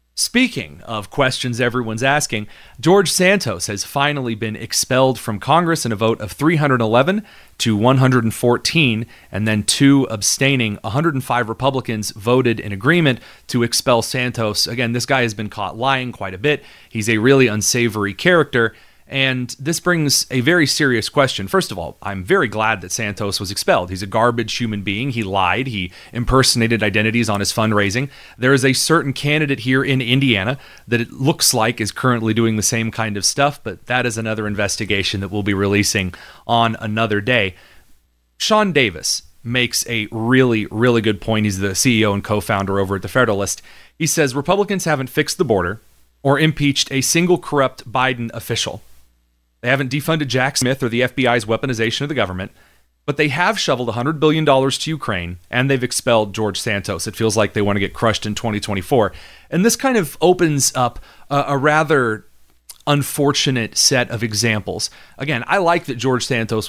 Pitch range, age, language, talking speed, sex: 105-135 Hz, 30-49, English, 175 wpm, male